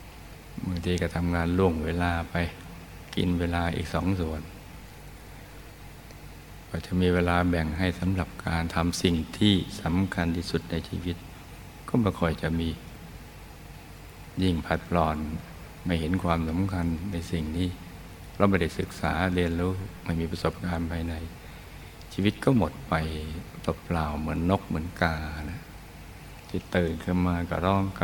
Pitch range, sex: 80-95 Hz, male